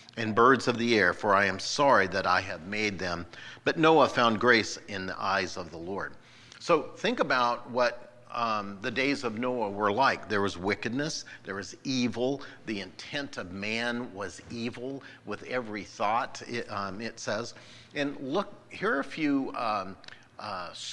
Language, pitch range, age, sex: English, 110-130 Hz, 50-69, male